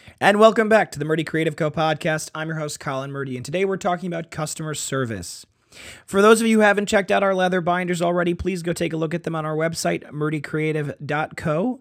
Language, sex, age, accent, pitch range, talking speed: English, male, 30-49, American, 145-180 Hz, 225 wpm